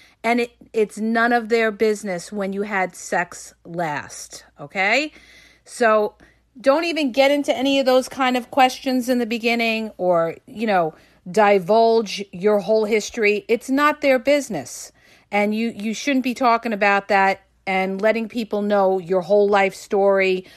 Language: English